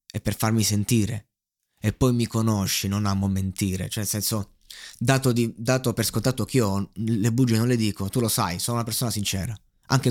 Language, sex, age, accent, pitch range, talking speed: Italian, male, 20-39, native, 105-150 Hz, 200 wpm